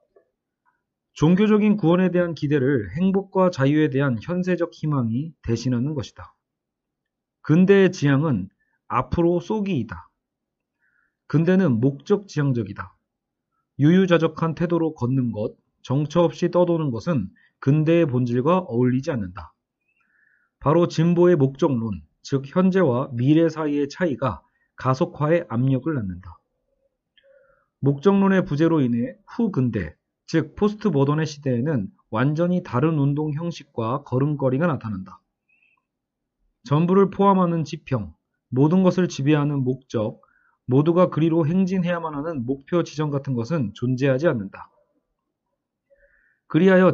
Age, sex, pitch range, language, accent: 30-49, male, 130-180 Hz, Korean, native